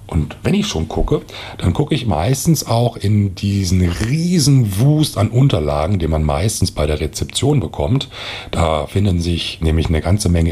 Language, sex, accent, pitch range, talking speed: German, male, German, 80-105 Hz, 170 wpm